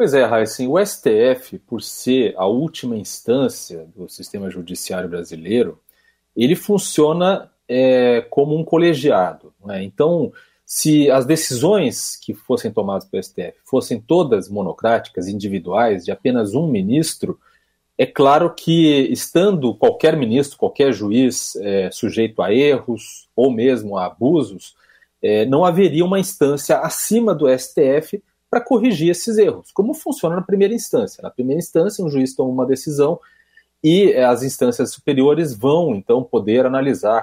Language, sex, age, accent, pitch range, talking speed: Portuguese, male, 40-59, Brazilian, 120-195 Hz, 140 wpm